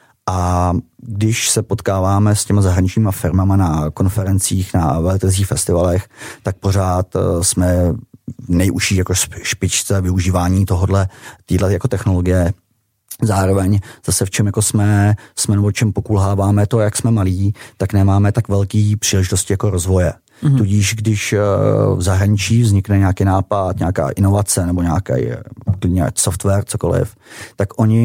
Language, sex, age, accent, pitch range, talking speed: Czech, male, 30-49, native, 95-105 Hz, 125 wpm